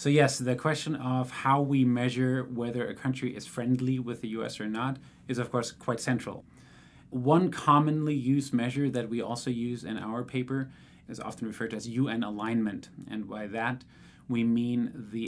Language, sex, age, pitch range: English, male, 30-49, 110-130 Hz